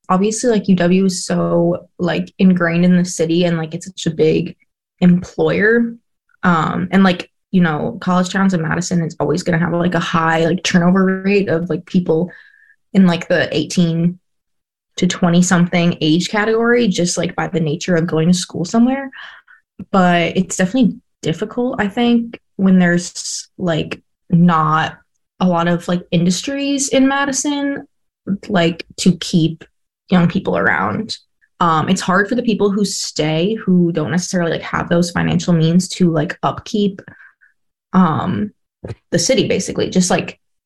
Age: 20-39